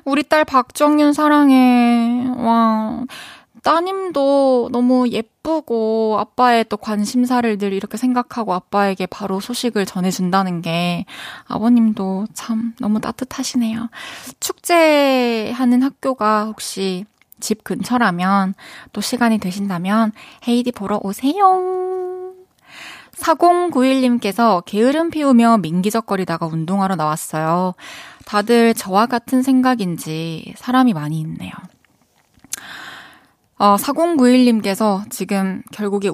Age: 20-39